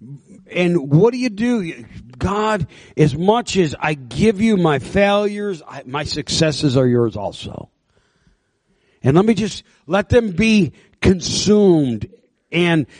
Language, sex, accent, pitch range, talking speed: English, male, American, 155-210 Hz, 135 wpm